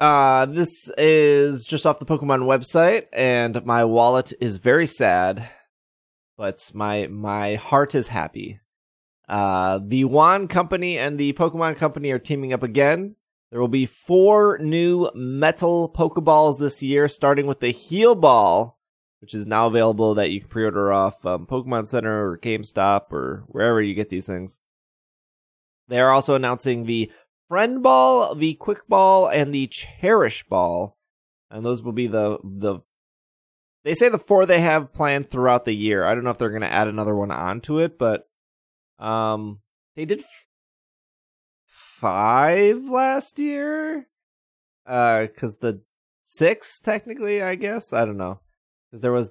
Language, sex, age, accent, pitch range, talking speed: English, male, 20-39, American, 105-155 Hz, 155 wpm